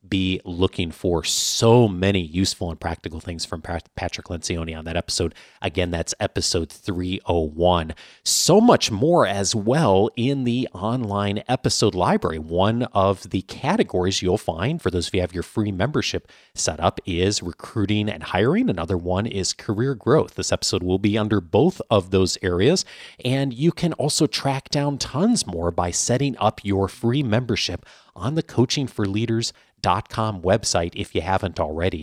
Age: 30-49